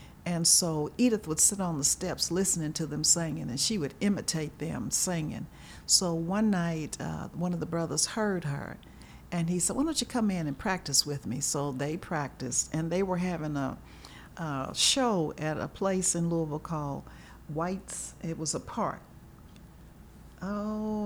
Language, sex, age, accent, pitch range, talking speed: English, female, 60-79, American, 150-185 Hz, 175 wpm